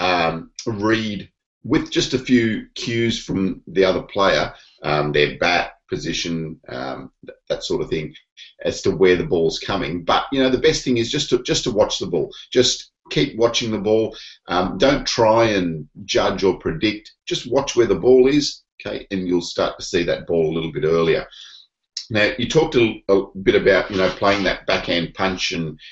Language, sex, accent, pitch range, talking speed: English, male, Australian, 85-130 Hz, 195 wpm